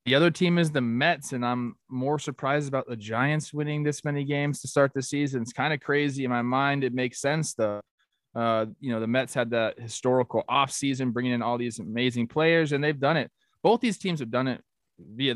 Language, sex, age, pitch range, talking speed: English, male, 20-39, 120-145 Hz, 225 wpm